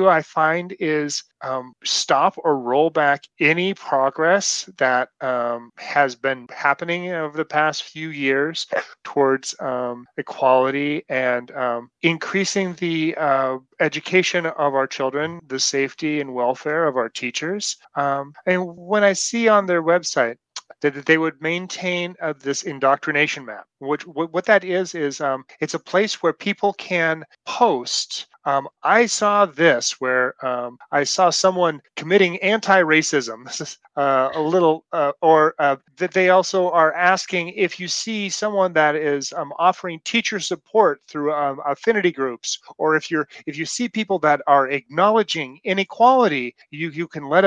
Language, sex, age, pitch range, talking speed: English, male, 30-49, 135-180 Hz, 150 wpm